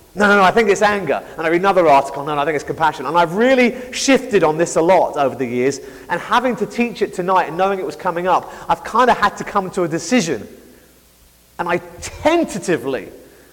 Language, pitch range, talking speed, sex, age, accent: English, 155-205 Hz, 235 wpm, male, 30-49, British